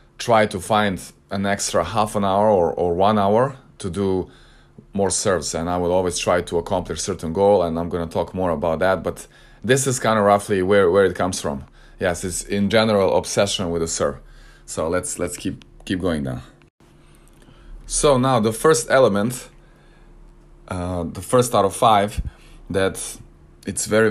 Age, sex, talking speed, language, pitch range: 20-39, male, 180 wpm, English, 95-115 Hz